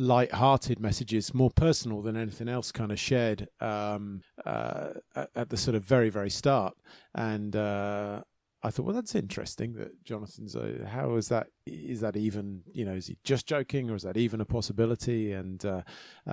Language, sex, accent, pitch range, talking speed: English, male, British, 100-115 Hz, 180 wpm